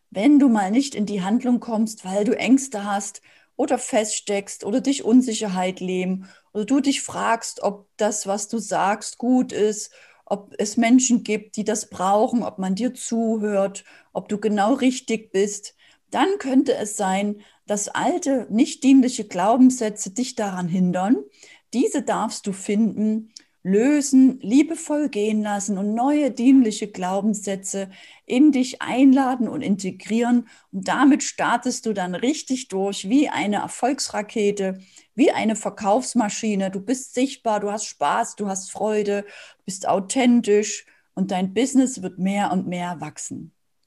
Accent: German